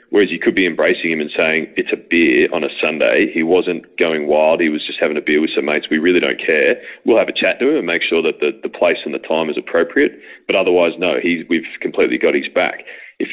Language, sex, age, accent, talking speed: English, male, 30-49, Australian, 265 wpm